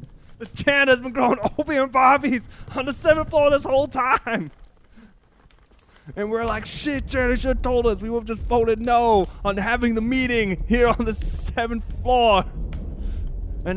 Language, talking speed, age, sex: English, 160 wpm, 20-39, male